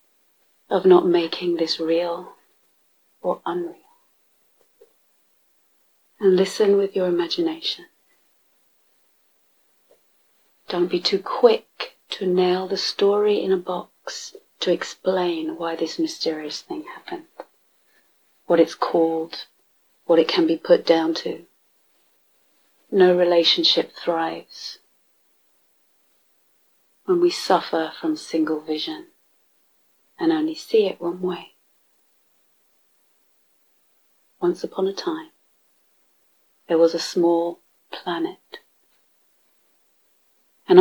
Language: English